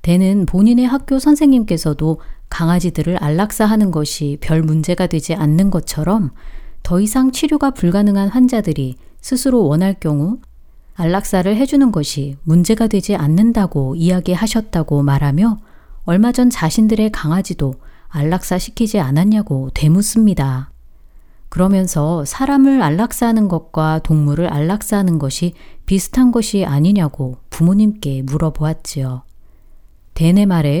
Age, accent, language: 40-59, native, Korean